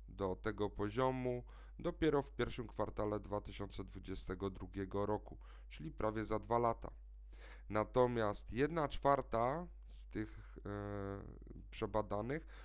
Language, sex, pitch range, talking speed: Polish, male, 100-120 Hz, 100 wpm